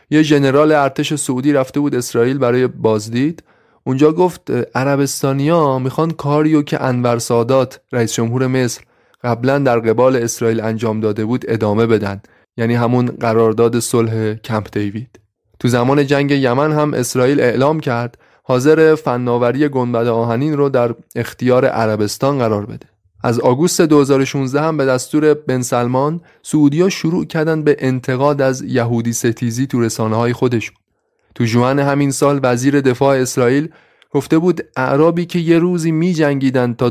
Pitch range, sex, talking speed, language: 115-145 Hz, male, 140 wpm, Persian